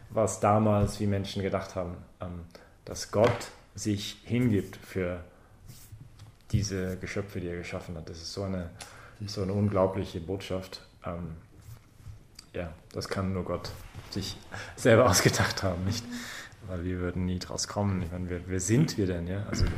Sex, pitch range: male, 95-110 Hz